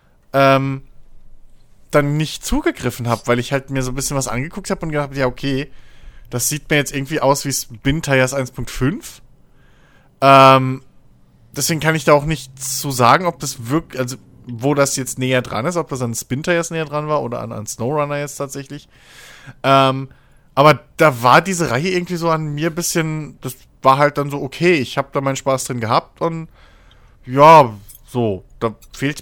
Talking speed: 185 wpm